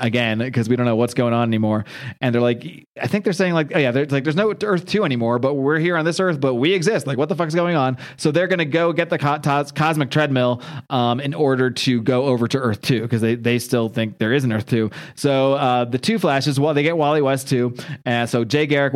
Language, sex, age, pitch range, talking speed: English, male, 30-49, 125-160 Hz, 270 wpm